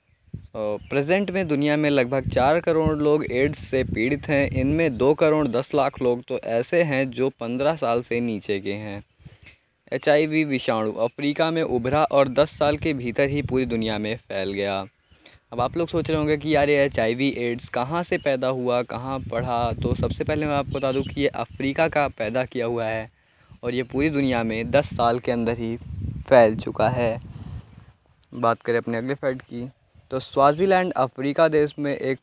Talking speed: 190 wpm